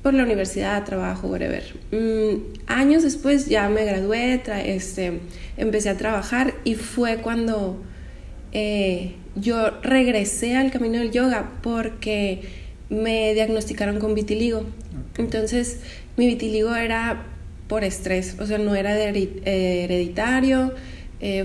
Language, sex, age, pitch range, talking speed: Spanish, female, 20-39, 195-235 Hz, 130 wpm